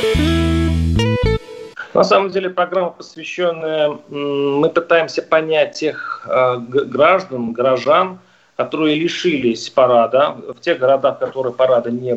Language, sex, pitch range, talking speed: Russian, male, 130-170 Hz, 105 wpm